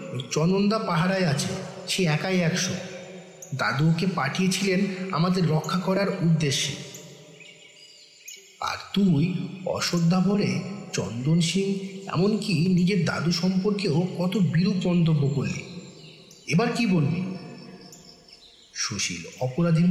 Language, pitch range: Bengali, 160-185 Hz